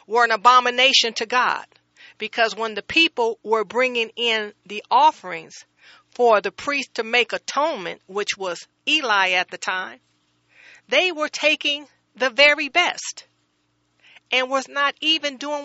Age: 40-59